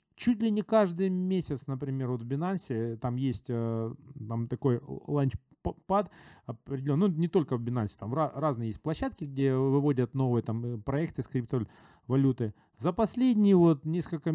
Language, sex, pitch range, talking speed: Russian, male, 115-150 Hz, 145 wpm